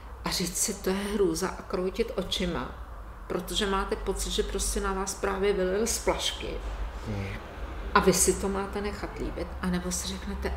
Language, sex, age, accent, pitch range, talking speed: Czech, female, 40-59, native, 165-195 Hz, 170 wpm